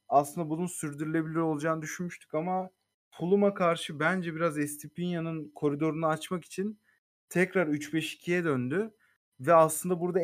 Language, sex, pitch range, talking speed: Turkish, male, 135-170 Hz, 115 wpm